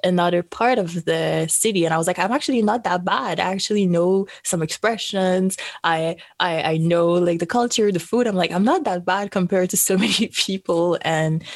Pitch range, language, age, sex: 155-195 Hz, English, 20-39, female